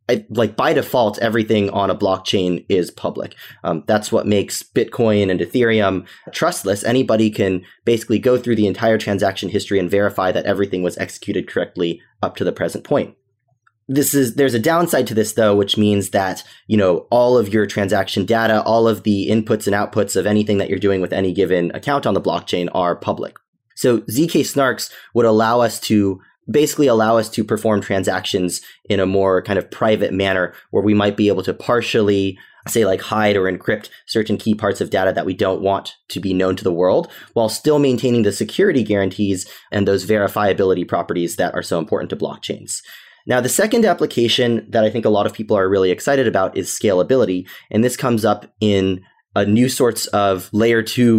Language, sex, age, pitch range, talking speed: English, male, 20-39, 95-115 Hz, 195 wpm